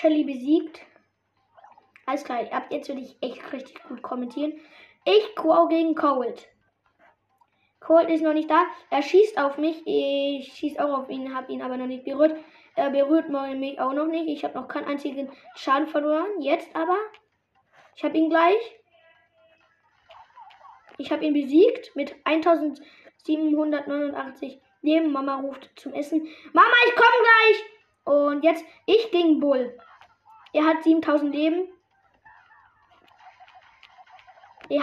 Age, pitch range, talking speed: 20-39, 280-335 Hz, 140 wpm